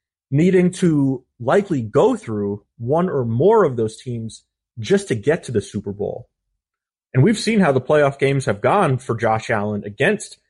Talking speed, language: 175 wpm, English